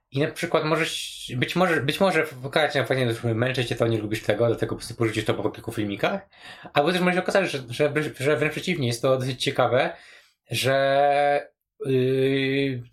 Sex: male